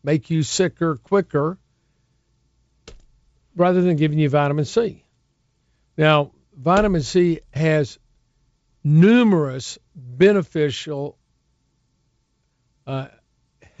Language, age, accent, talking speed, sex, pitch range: English, 50-69, American, 75 wpm, male, 140-170 Hz